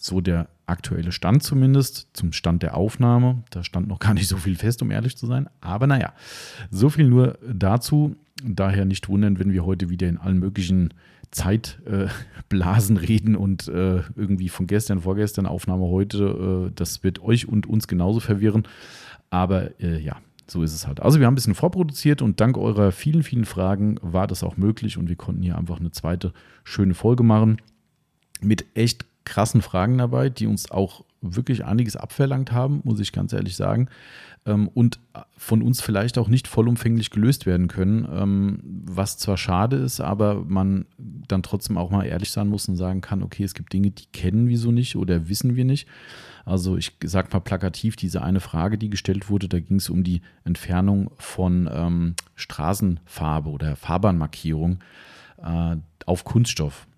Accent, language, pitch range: German, German, 90-115 Hz